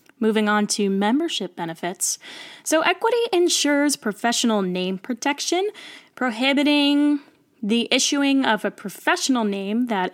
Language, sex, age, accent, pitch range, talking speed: English, female, 10-29, American, 200-260 Hz, 110 wpm